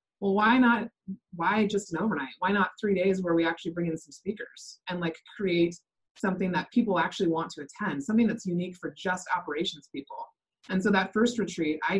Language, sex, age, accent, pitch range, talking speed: English, female, 20-39, American, 160-185 Hz, 205 wpm